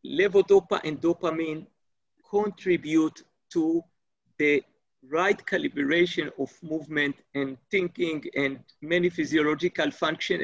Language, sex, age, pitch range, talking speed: English, male, 50-69, 160-225 Hz, 90 wpm